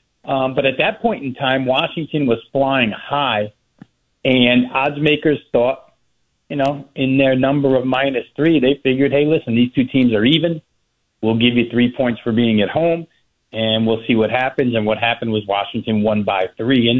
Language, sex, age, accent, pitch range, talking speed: English, male, 40-59, American, 115-145 Hz, 195 wpm